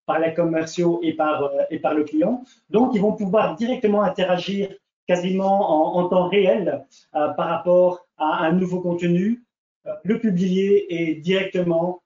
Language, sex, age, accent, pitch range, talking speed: French, male, 40-59, French, 160-190 Hz, 160 wpm